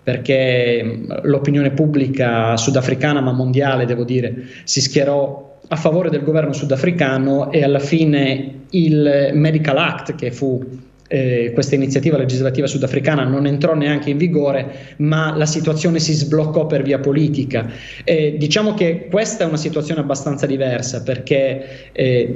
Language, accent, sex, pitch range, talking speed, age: Italian, native, male, 130-150 Hz, 140 wpm, 20-39